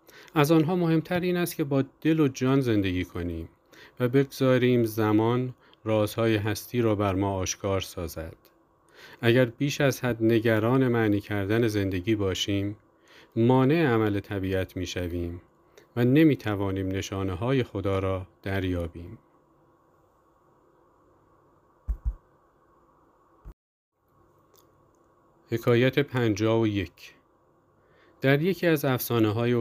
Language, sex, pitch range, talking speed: Persian, male, 100-130 Hz, 105 wpm